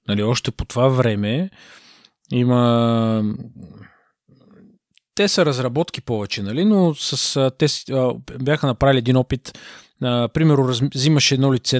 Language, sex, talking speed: Bulgarian, male, 120 wpm